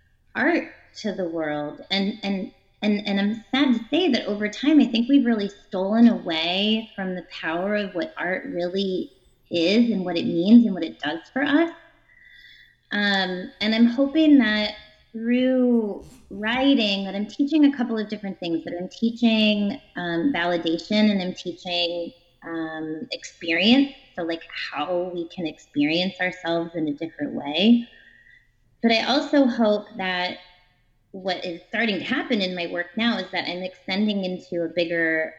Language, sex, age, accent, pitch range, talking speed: English, female, 20-39, American, 170-230 Hz, 165 wpm